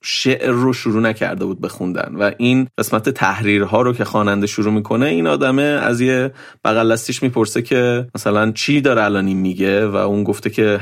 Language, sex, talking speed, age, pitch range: Persian, male, 170 wpm, 30-49, 105-125 Hz